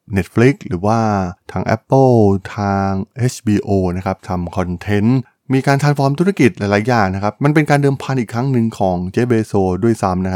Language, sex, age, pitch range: Thai, male, 20-39, 95-120 Hz